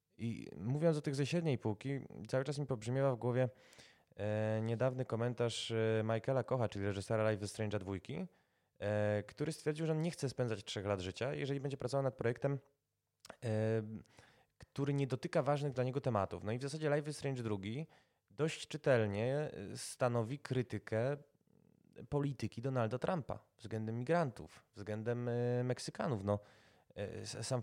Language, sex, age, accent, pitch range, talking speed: Polish, male, 20-39, native, 110-145 Hz, 155 wpm